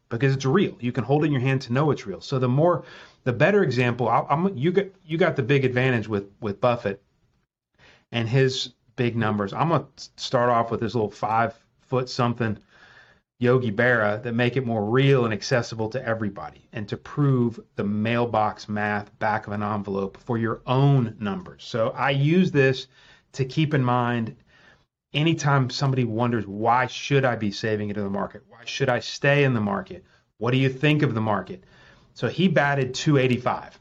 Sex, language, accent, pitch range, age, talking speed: male, English, American, 115-140 Hz, 30-49, 190 wpm